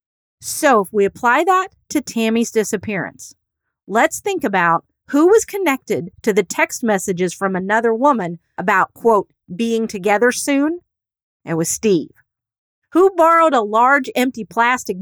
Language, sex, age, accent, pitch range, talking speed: English, female, 40-59, American, 200-285 Hz, 140 wpm